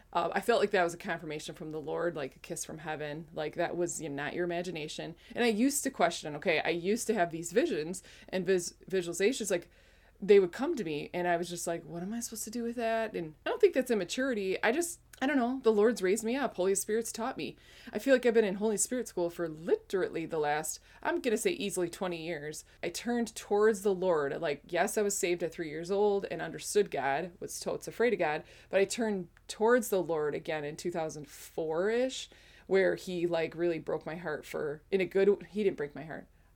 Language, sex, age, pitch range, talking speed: English, female, 20-39, 170-210 Hz, 235 wpm